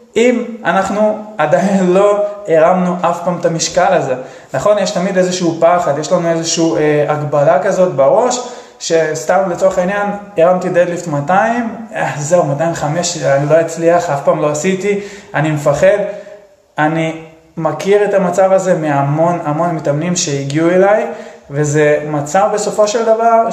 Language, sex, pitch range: Hebrew, male, 155-195 Hz